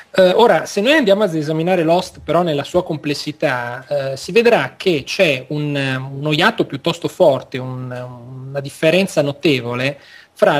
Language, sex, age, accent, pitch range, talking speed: Italian, male, 30-49, native, 135-185 Hz, 145 wpm